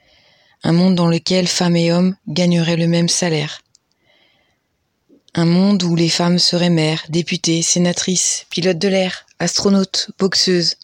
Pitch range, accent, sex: 165-180 Hz, French, female